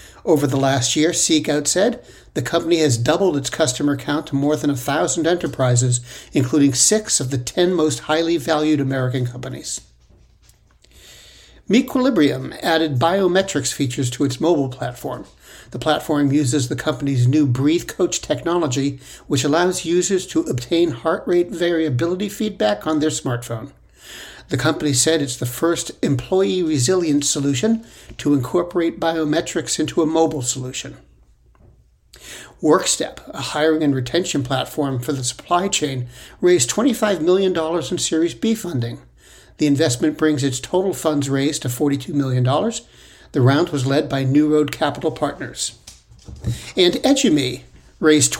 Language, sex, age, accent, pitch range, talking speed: English, male, 60-79, American, 135-170 Hz, 140 wpm